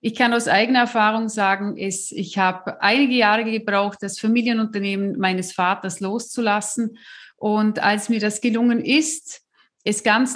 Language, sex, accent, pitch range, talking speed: German, female, German, 200-240 Hz, 140 wpm